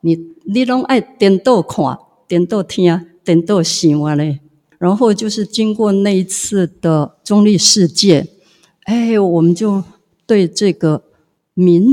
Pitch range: 160-210 Hz